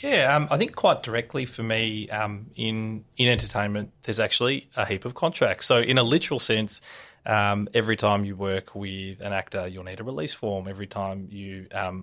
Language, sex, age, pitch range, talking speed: English, male, 20-39, 100-115 Hz, 200 wpm